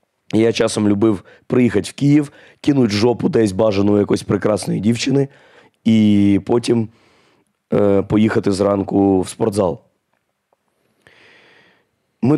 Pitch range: 105-120 Hz